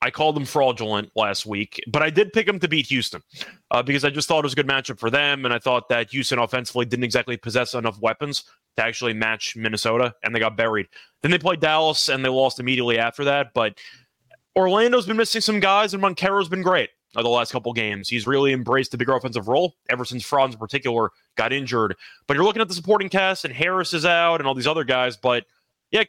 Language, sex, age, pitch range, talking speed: English, male, 20-39, 125-180 Hz, 230 wpm